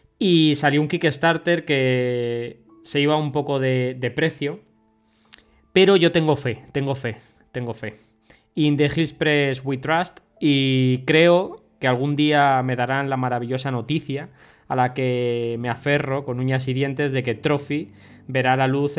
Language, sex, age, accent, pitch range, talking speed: Spanish, male, 20-39, Spanish, 120-145 Hz, 160 wpm